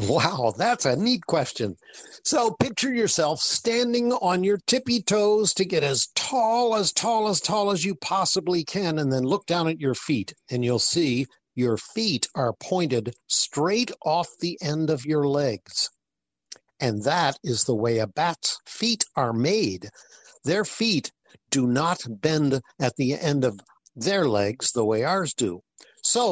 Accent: American